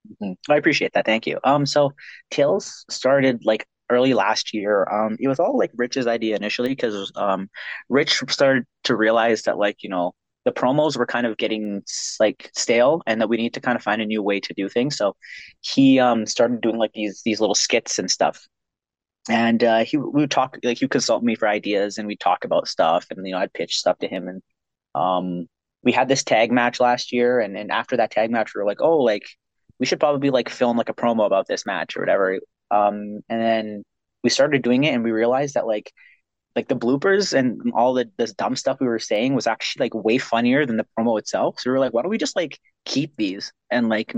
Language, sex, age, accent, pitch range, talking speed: English, male, 20-39, American, 105-125 Hz, 235 wpm